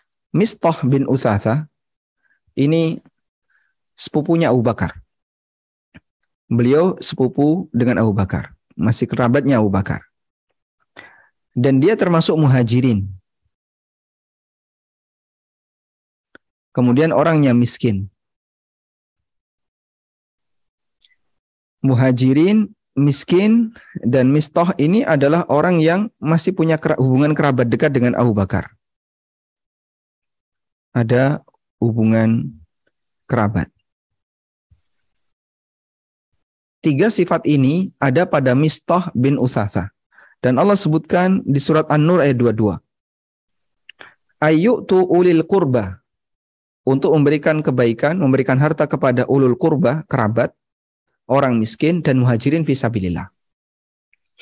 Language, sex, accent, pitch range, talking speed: Indonesian, male, native, 110-155 Hz, 80 wpm